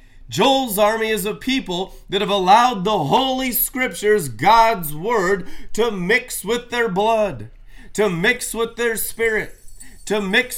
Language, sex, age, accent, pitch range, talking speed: English, male, 30-49, American, 170-235 Hz, 140 wpm